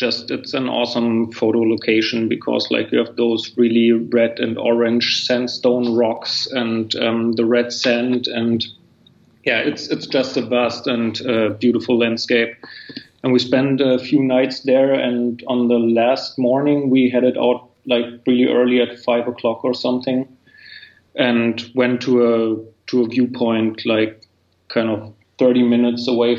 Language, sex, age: English, male, 30-49